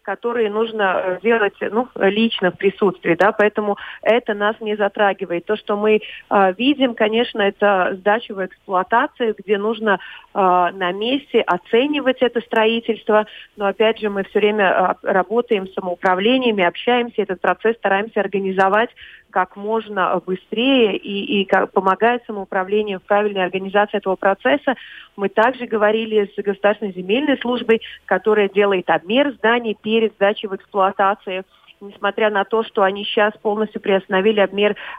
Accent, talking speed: native, 135 wpm